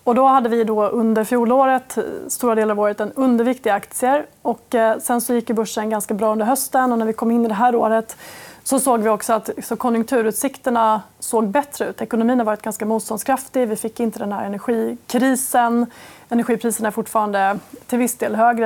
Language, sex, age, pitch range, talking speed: Swedish, female, 30-49, 220-250 Hz, 195 wpm